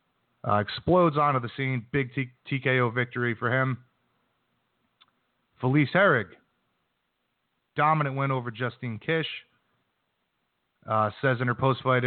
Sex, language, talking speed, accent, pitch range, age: male, English, 110 wpm, American, 110-135 Hz, 30-49